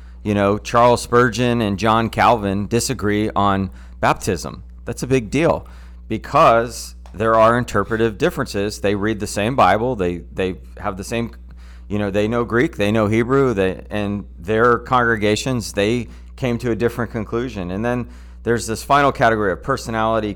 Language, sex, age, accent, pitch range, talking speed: English, male, 30-49, American, 95-115 Hz, 160 wpm